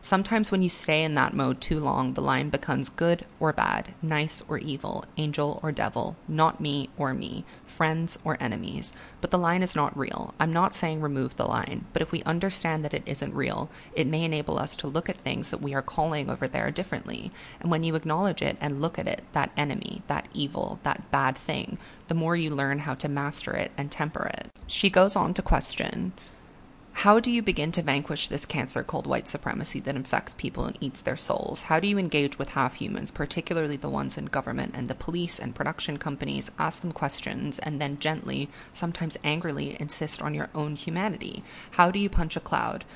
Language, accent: English, American